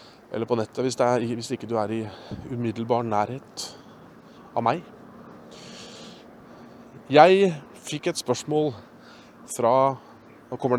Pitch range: 115-160 Hz